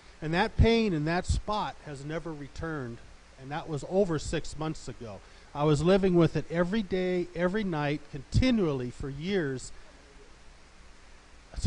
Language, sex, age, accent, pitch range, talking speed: English, male, 40-59, American, 125-155 Hz, 150 wpm